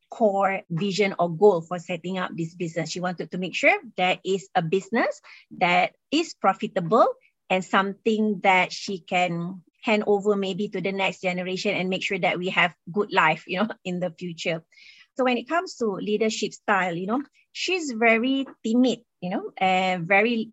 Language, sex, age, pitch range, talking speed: English, female, 20-39, 190-245 Hz, 180 wpm